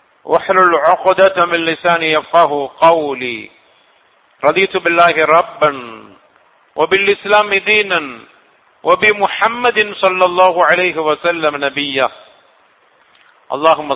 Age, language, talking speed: 50-69, English, 75 wpm